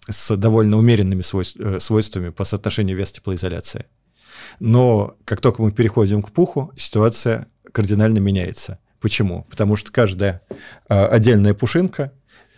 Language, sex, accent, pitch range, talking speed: Russian, male, native, 100-120 Hz, 115 wpm